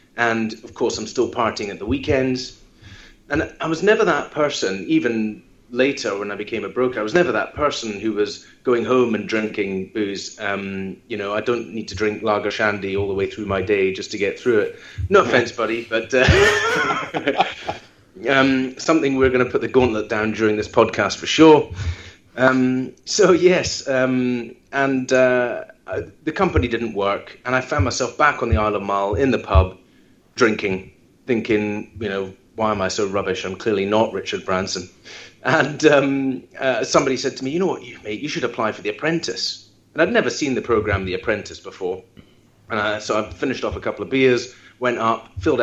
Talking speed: 200 wpm